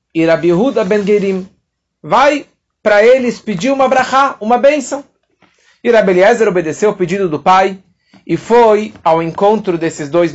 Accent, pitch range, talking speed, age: Brazilian, 180-235 Hz, 135 wpm, 40-59